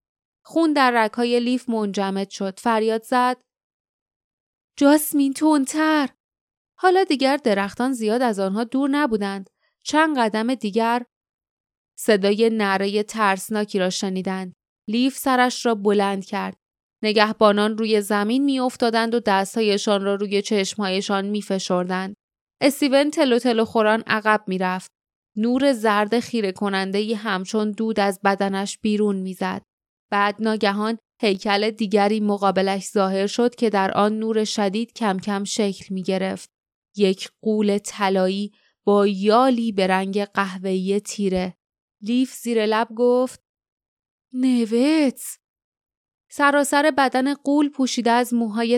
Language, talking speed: Persian, 120 wpm